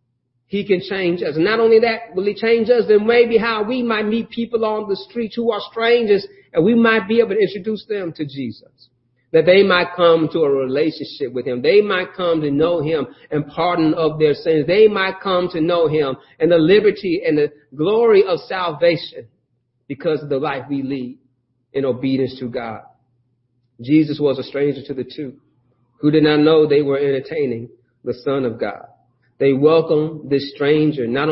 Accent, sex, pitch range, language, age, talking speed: American, male, 130-215 Hz, English, 40-59, 195 wpm